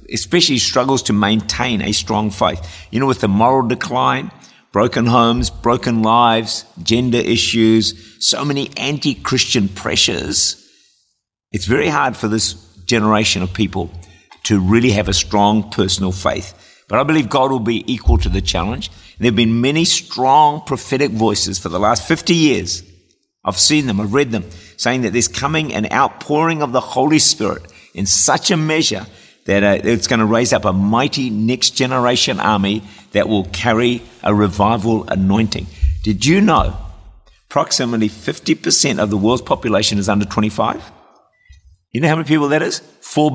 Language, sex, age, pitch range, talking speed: English, male, 50-69, 95-125 Hz, 160 wpm